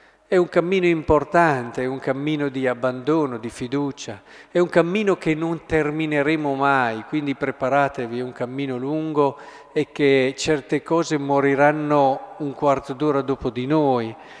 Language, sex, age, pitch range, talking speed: Italian, male, 50-69, 115-150 Hz, 145 wpm